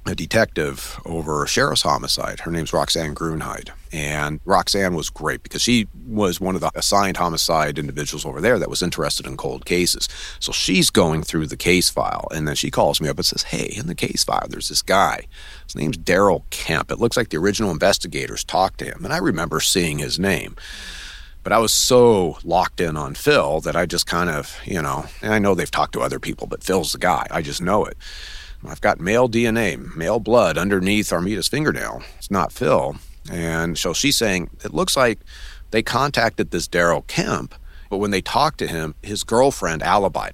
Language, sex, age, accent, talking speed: English, male, 40-59, American, 205 wpm